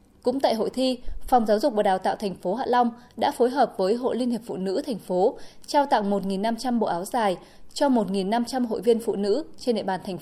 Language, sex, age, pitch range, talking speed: Vietnamese, female, 20-39, 200-260 Hz, 240 wpm